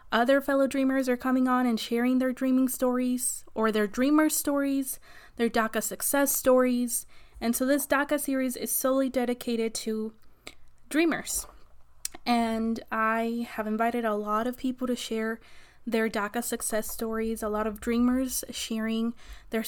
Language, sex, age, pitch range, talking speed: English, female, 20-39, 225-260 Hz, 150 wpm